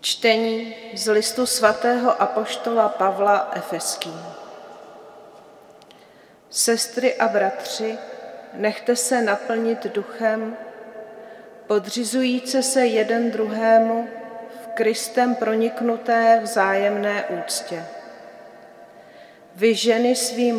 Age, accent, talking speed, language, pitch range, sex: 40-59, native, 75 wpm, Czech, 215-230 Hz, female